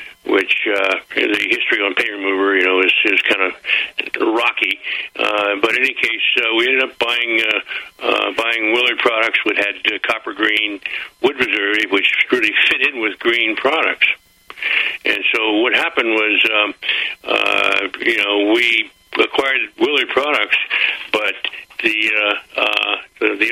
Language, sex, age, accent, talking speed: English, male, 60-79, American, 160 wpm